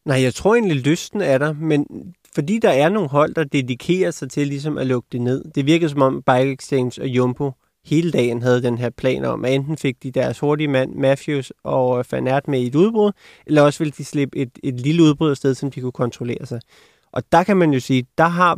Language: Danish